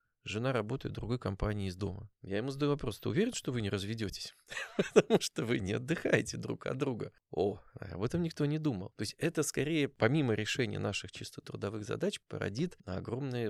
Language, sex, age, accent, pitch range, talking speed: Russian, male, 20-39, native, 100-135 Hz, 195 wpm